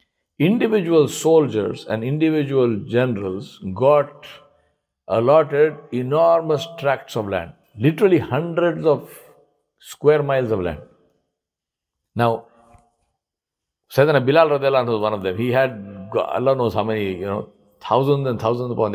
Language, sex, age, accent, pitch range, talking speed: English, male, 60-79, Indian, 115-150 Hz, 115 wpm